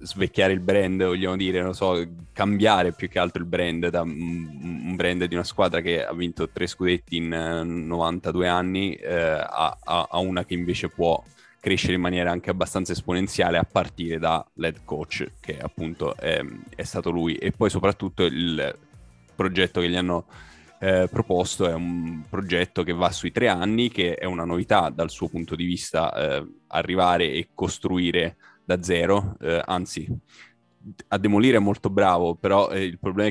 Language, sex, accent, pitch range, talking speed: Italian, male, native, 85-95 Hz, 170 wpm